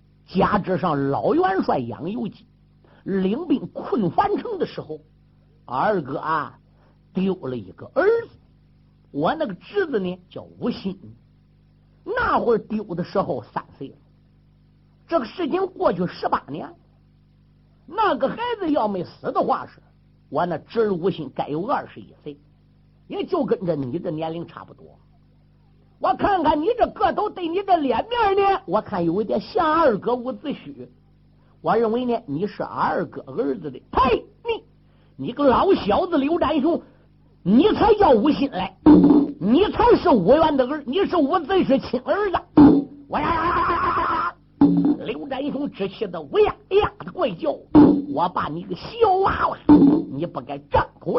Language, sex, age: Chinese, male, 50-69